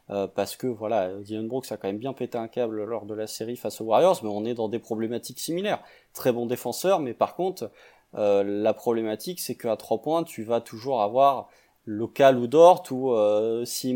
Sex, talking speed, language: male, 215 wpm, French